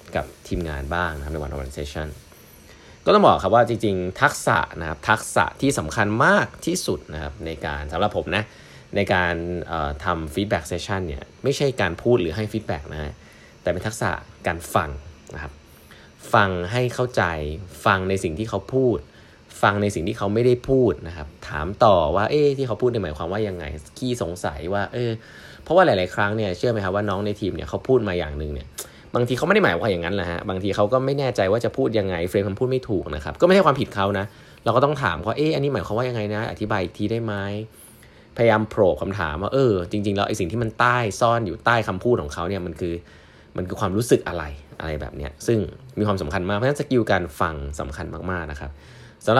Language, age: Thai, 20-39